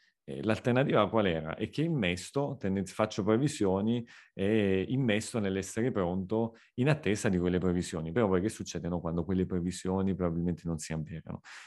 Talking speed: 145 wpm